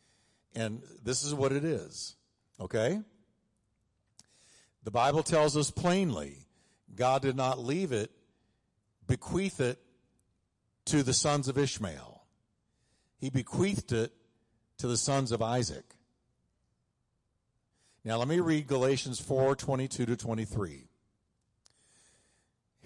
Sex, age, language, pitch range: male, 50-69, English, 115-150 Hz